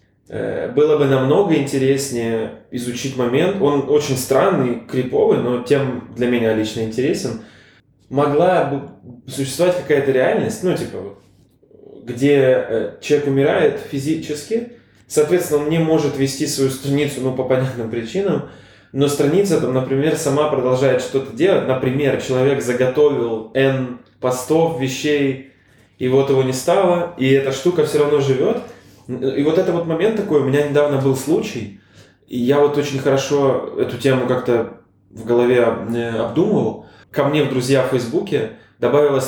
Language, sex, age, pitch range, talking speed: Russian, male, 20-39, 130-150 Hz, 140 wpm